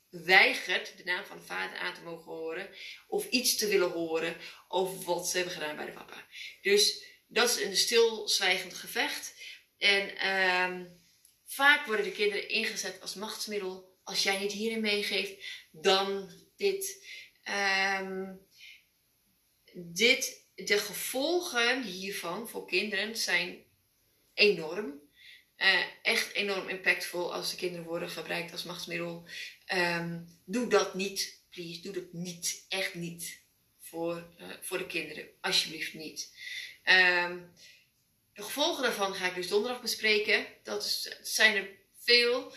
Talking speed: 125 wpm